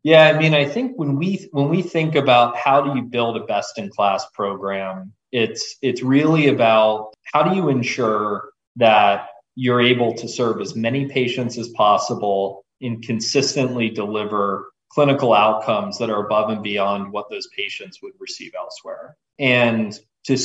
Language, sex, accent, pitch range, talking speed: English, male, American, 110-140 Hz, 160 wpm